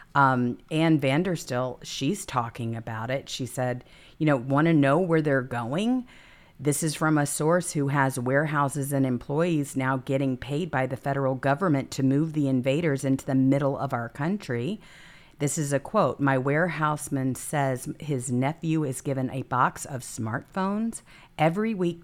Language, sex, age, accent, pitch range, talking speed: English, female, 50-69, American, 135-170 Hz, 165 wpm